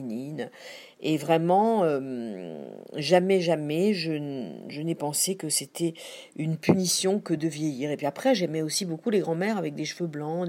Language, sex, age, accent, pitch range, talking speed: French, female, 50-69, French, 150-195 Hz, 165 wpm